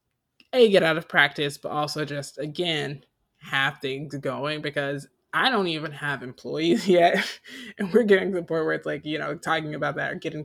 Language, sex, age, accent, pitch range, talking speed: English, male, 20-39, American, 135-165 Hz, 200 wpm